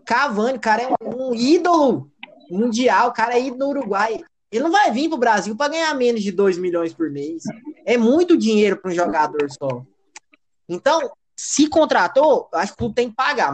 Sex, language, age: male, Portuguese, 20-39